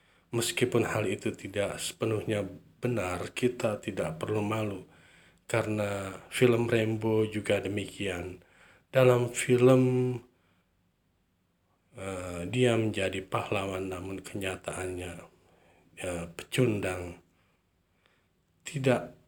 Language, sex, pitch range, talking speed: Indonesian, male, 90-110 Hz, 80 wpm